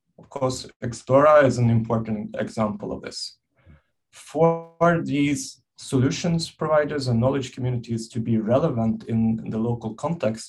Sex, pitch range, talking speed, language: male, 115-135 Hz, 130 wpm, English